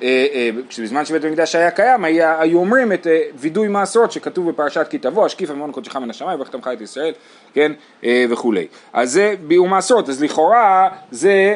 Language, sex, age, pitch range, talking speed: Hebrew, male, 30-49, 150-205 Hz, 160 wpm